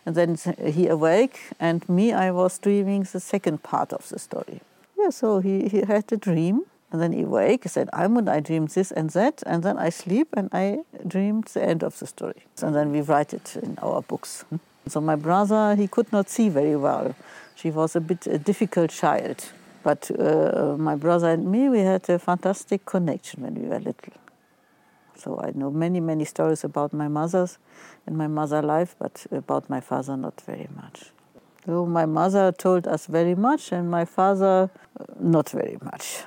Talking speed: 195 wpm